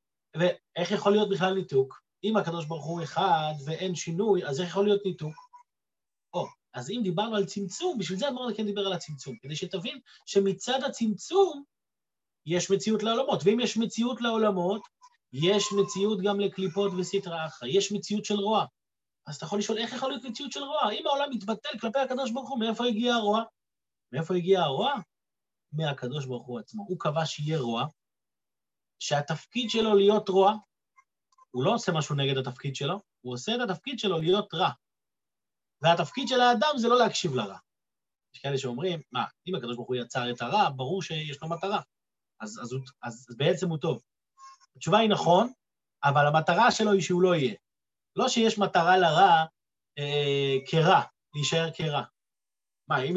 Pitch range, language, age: 150-215 Hz, Hebrew, 30-49